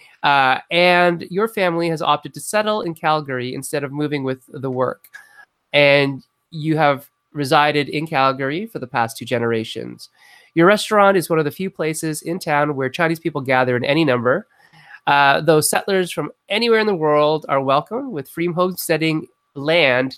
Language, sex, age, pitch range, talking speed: English, male, 30-49, 135-175 Hz, 175 wpm